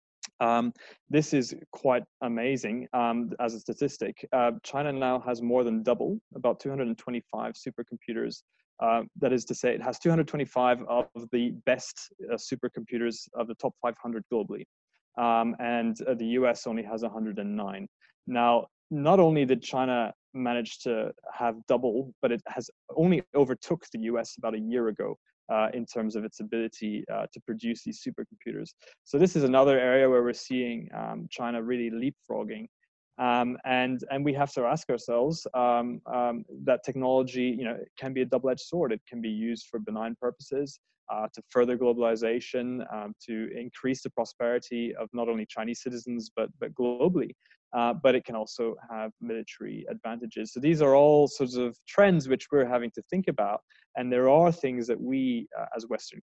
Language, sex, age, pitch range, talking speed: English, male, 20-39, 115-135 Hz, 170 wpm